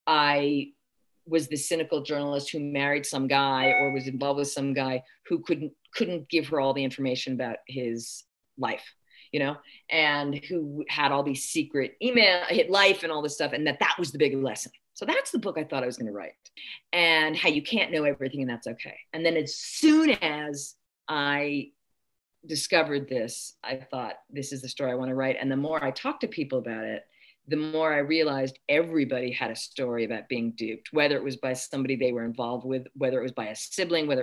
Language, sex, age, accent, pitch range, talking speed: English, female, 40-59, American, 130-165 Hz, 215 wpm